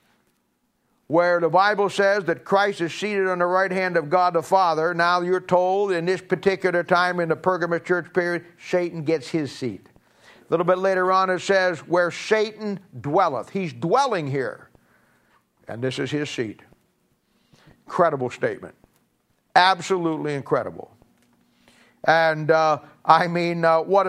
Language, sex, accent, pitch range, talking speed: English, male, American, 150-190 Hz, 150 wpm